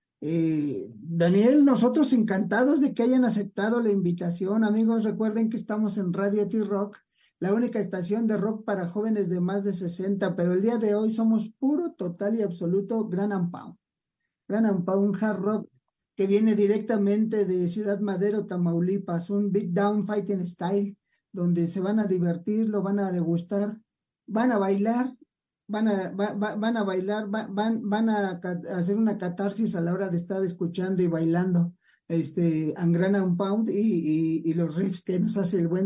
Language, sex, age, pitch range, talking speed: English, male, 50-69, 180-215 Hz, 175 wpm